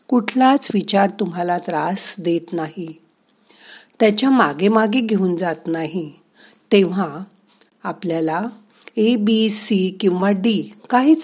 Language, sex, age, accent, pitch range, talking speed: Marathi, female, 50-69, native, 175-235 Hz, 80 wpm